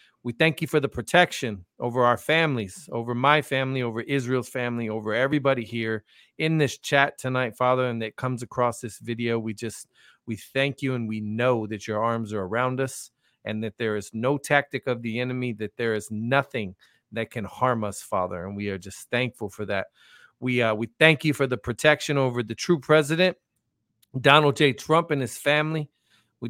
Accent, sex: American, male